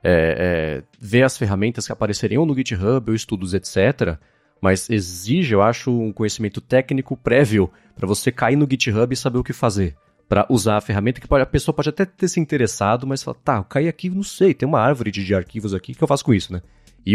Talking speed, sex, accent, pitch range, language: 235 wpm, male, Brazilian, 100-130 Hz, Portuguese